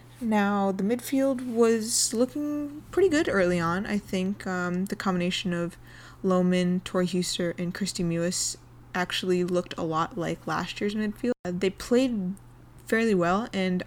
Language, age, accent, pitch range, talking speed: English, 20-39, American, 180-220 Hz, 150 wpm